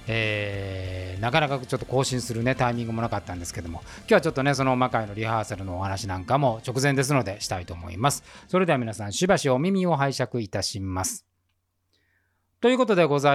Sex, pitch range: male, 105-150 Hz